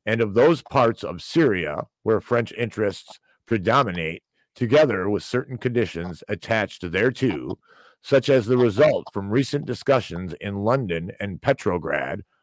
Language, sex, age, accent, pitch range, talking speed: English, male, 50-69, American, 95-125 Hz, 130 wpm